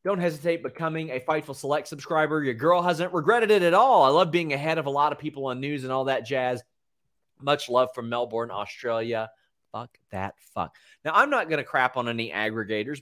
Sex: male